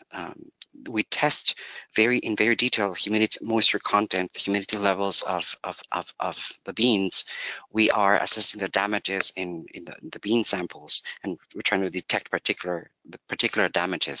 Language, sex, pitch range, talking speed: English, male, 95-115 Hz, 170 wpm